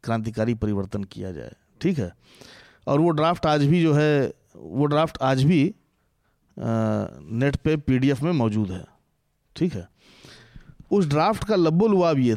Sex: male